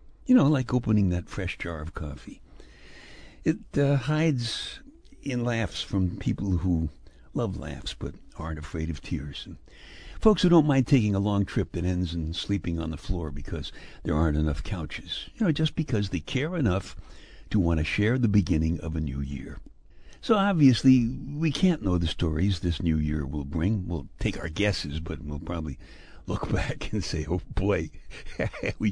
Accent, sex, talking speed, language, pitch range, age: American, male, 180 wpm, English, 80-125 Hz, 60-79